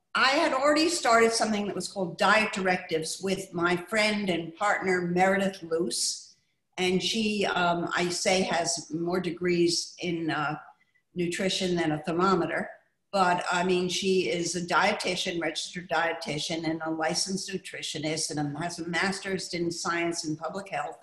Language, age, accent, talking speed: English, 50-69, American, 150 wpm